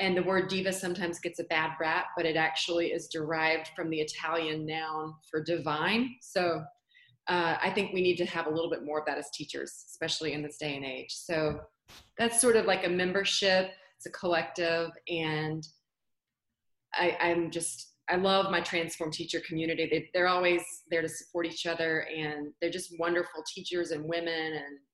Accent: American